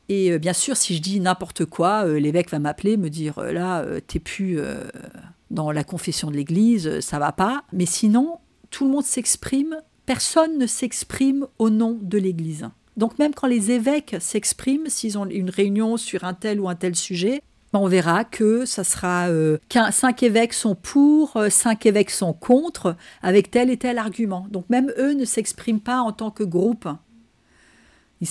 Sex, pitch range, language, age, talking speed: female, 180-245 Hz, French, 50-69, 180 wpm